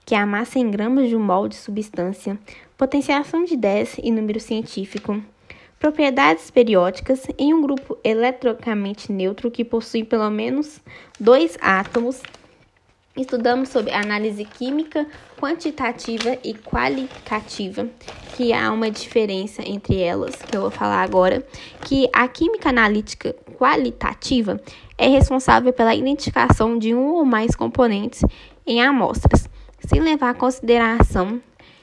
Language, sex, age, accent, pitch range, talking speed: Portuguese, female, 10-29, Brazilian, 210-260 Hz, 130 wpm